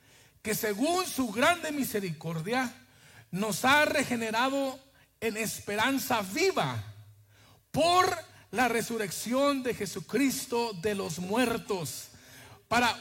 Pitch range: 195-305 Hz